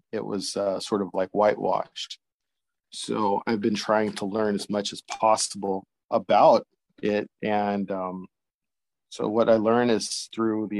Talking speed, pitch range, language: 155 wpm, 100-110 Hz, English